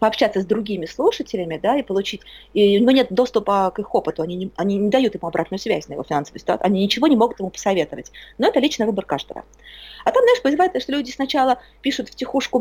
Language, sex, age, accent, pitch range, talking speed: Russian, female, 20-39, native, 190-275 Hz, 225 wpm